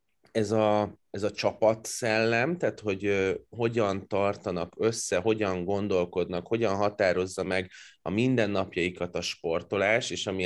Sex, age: male, 20-39